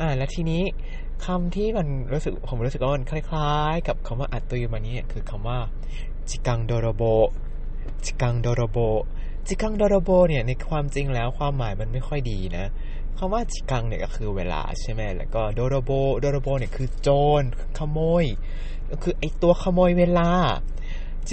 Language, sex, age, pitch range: Thai, male, 20-39, 120-155 Hz